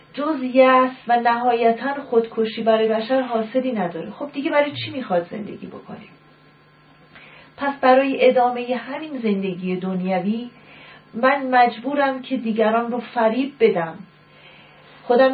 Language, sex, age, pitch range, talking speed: Persian, female, 40-59, 210-260 Hz, 115 wpm